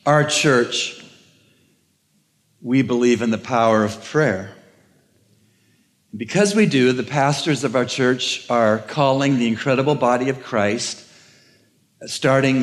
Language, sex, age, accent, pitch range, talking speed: English, male, 60-79, American, 115-145 Hz, 120 wpm